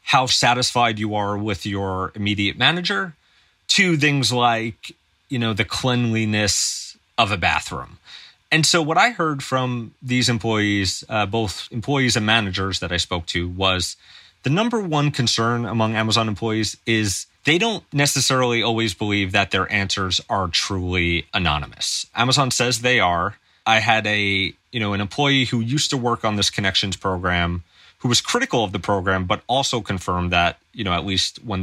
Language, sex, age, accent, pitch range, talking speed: English, male, 30-49, American, 95-125 Hz, 170 wpm